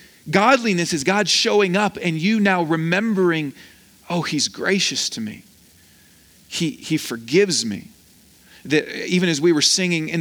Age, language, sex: 40-59, English, male